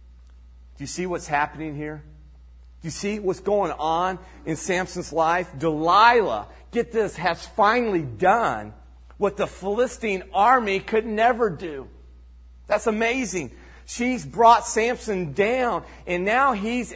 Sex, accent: male, American